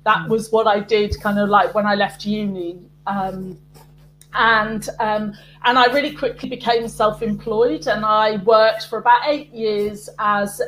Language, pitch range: English, 205-235 Hz